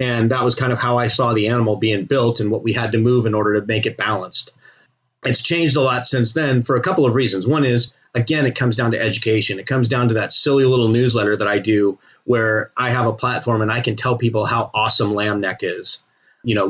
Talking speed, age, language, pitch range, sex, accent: 255 wpm, 30-49, English, 105-125 Hz, male, American